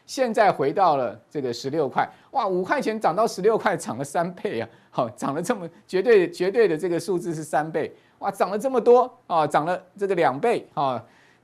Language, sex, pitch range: Chinese, male, 145-215 Hz